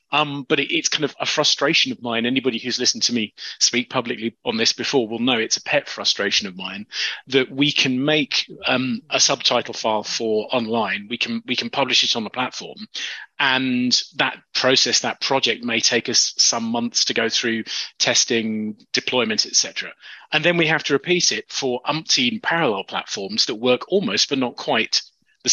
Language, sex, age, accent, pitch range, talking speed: English, male, 30-49, British, 120-145 Hz, 195 wpm